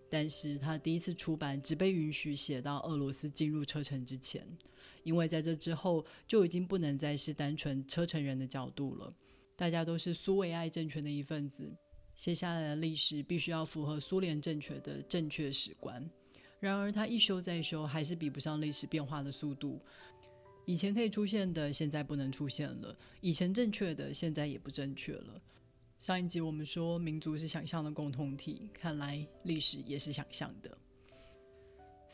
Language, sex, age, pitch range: Chinese, female, 30-49, 145-165 Hz